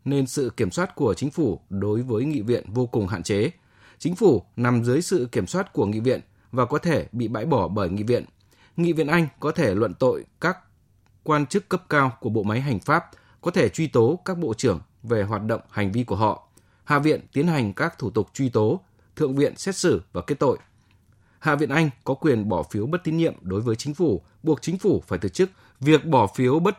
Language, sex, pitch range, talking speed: Vietnamese, male, 110-160 Hz, 235 wpm